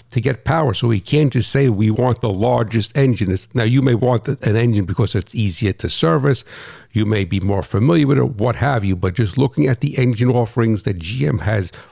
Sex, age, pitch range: male, 60-79, 110-140 Hz